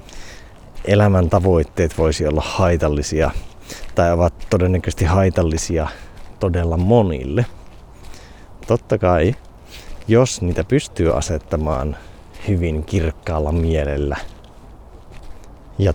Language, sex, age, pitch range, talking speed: Finnish, male, 30-49, 80-95 Hz, 80 wpm